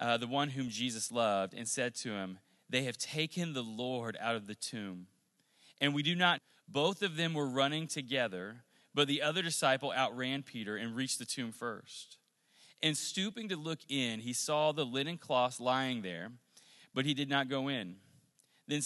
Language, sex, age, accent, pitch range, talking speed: English, male, 30-49, American, 115-150 Hz, 190 wpm